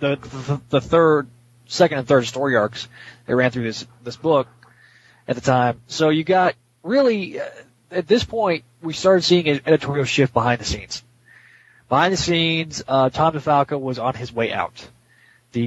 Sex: male